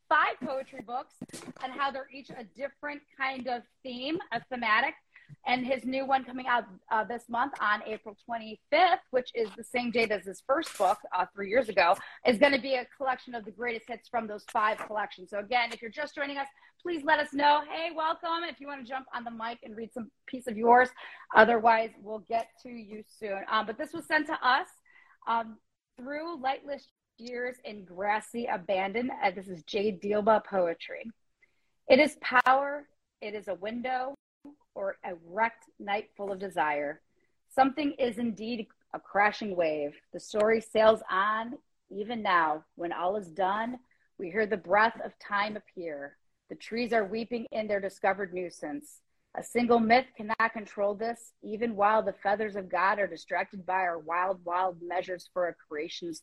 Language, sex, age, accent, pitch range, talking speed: English, female, 30-49, American, 200-265 Hz, 185 wpm